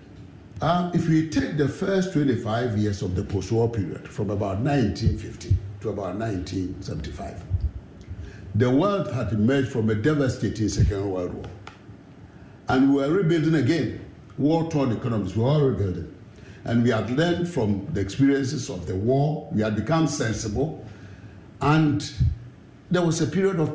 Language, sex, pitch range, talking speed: English, male, 100-145 Hz, 145 wpm